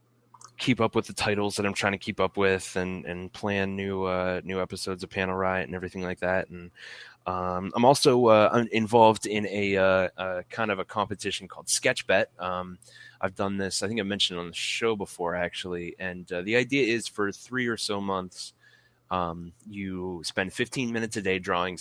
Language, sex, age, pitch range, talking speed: English, male, 20-39, 90-110 Hz, 200 wpm